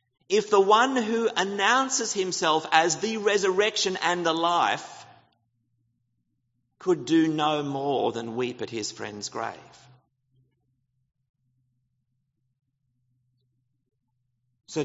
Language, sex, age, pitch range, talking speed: English, male, 50-69, 125-180 Hz, 95 wpm